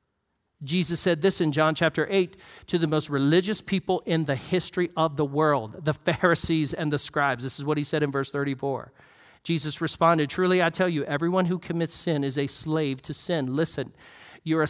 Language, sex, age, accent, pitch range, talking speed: English, male, 40-59, American, 150-180 Hz, 195 wpm